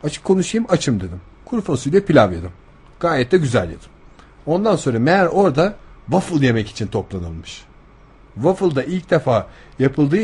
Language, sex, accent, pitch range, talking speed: Turkish, male, native, 105-155 Hz, 145 wpm